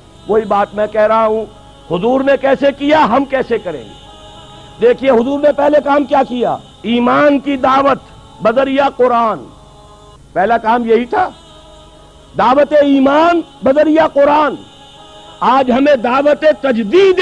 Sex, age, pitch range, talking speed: male, 50-69, 215-275 Hz, 130 wpm